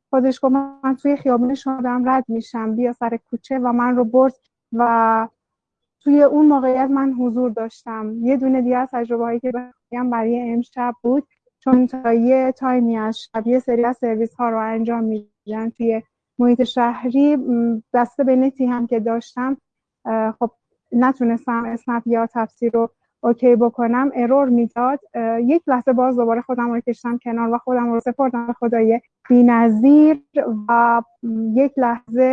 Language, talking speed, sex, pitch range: Persian, 150 wpm, female, 230-260 Hz